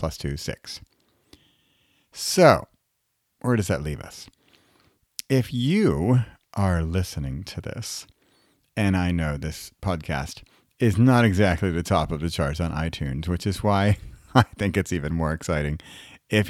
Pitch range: 80-105 Hz